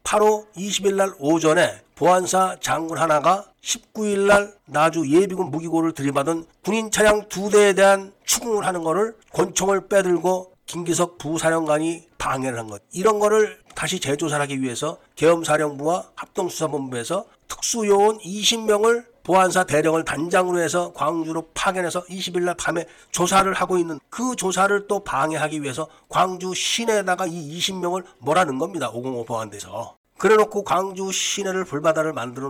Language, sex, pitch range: Korean, male, 155-200 Hz